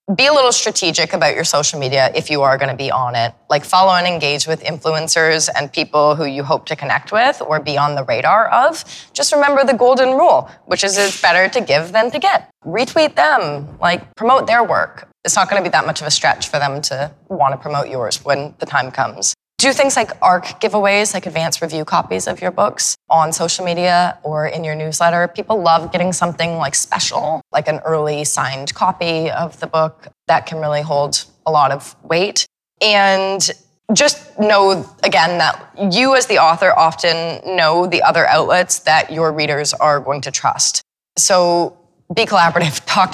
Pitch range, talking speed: 150-195 Hz, 200 wpm